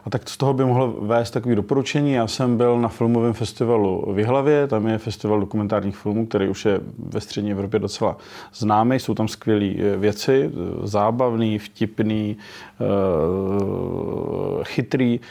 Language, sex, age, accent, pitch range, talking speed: Czech, male, 30-49, native, 105-130 Hz, 145 wpm